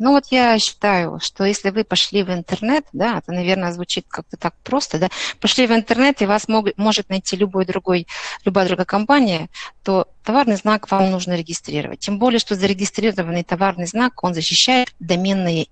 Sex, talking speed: female, 175 wpm